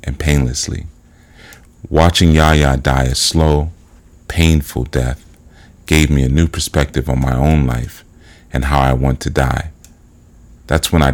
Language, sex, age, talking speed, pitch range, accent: English, male, 40-59, 145 wpm, 70-85 Hz, American